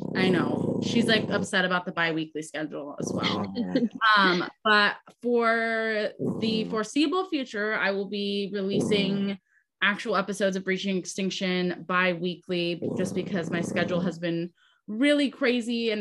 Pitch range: 175-215 Hz